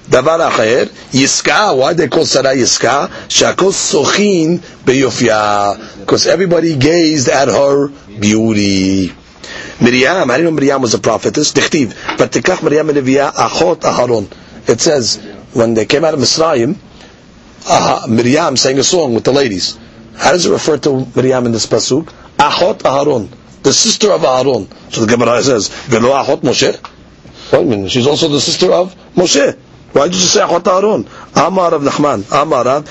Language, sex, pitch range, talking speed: English, male, 130-195 Hz, 140 wpm